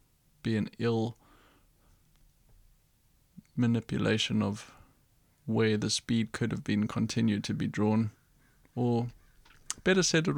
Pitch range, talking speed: 105-120 Hz, 110 wpm